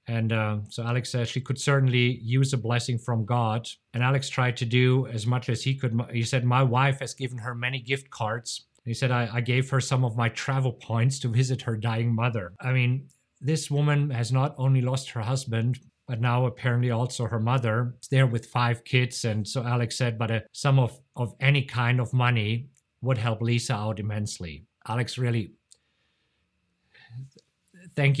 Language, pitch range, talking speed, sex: English, 115-130 Hz, 195 wpm, male